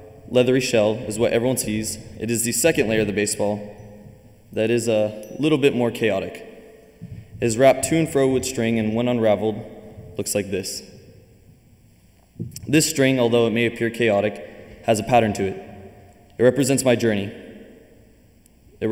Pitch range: 105-120 Hz